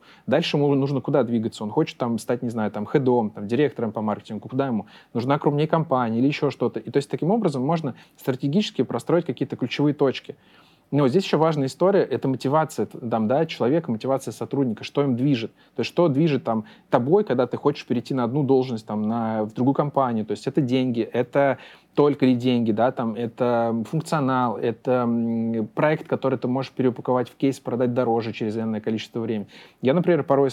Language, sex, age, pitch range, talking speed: Russian, male, 20-39, 115-140 Hz, 195 wpm